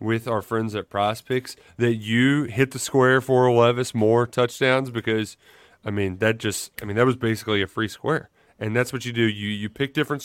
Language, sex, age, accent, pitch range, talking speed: English, male, 30-49, American, 115-145 Hz, 210 wpm